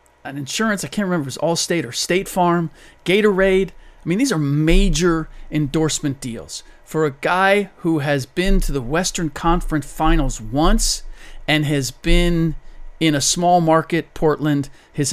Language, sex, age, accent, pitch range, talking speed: English, male, 40-59, American, 135-160 Hz, 160 wpm